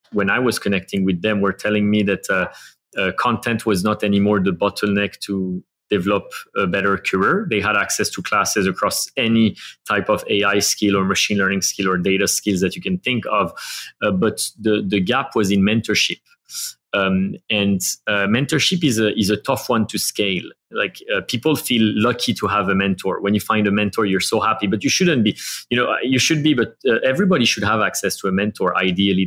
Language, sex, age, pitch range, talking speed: English, male, 30-49, 100-115 Hz, 210 wpm